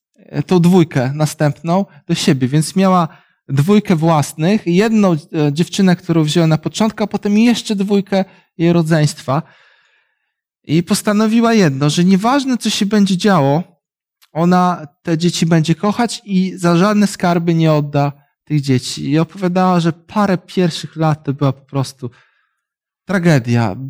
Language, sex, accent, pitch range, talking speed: Polish, male, native, 155-200 Hz, 135 wpm